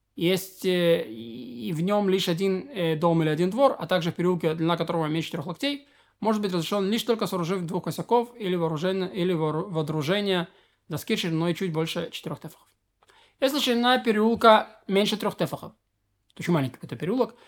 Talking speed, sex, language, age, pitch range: 165 wpm, male, Russian, 20-39, 160-205 Hz